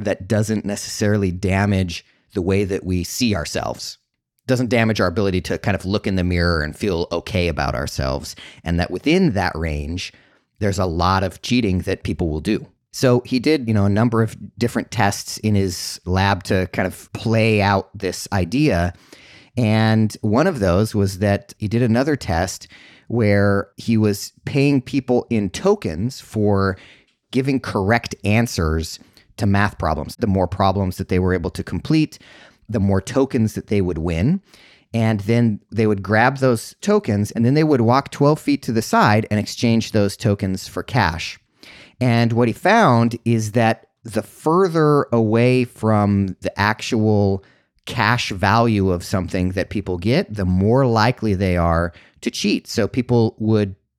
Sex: male